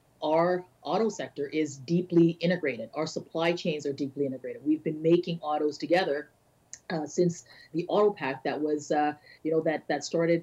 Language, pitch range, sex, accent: English, 155-185 Hz, female, American